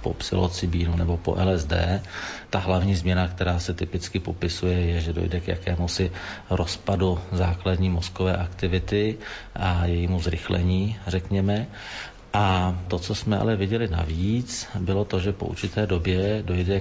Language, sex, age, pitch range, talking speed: Slovak, male, 40-59, 85-95 Hz, 140 wpm